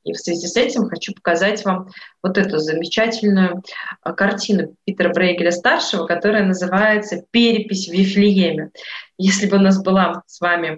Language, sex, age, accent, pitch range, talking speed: Russian, female, 20-39, native, 175-205 Hz, 145 wpm